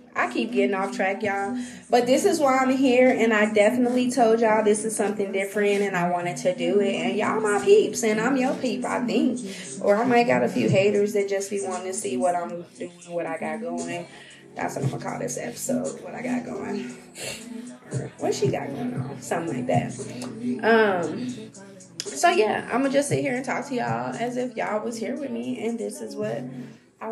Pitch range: 200-245 Hz